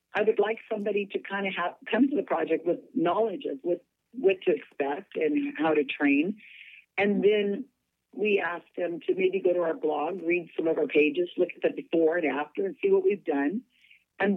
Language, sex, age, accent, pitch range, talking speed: English, female, 50-69, American, 175-265 Hz, 210 wpm